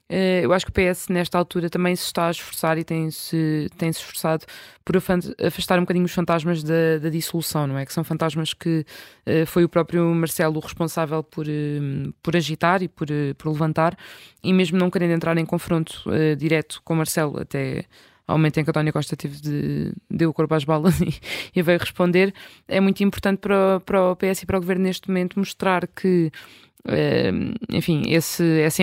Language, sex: Portuguese, female